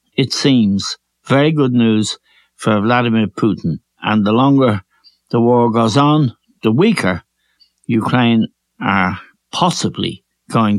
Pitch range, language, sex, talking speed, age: 110-140 Hz, English, male, 115 wpm, 60-79